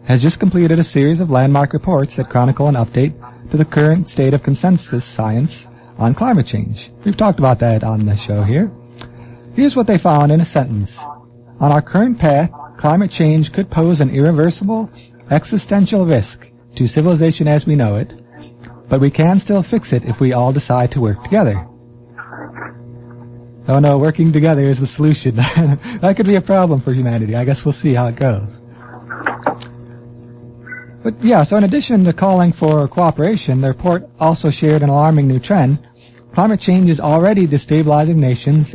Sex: male